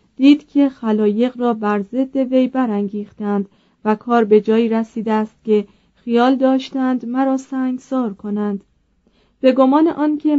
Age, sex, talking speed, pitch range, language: 30-49, female, 135 wpm, 210-260 Hz, Persian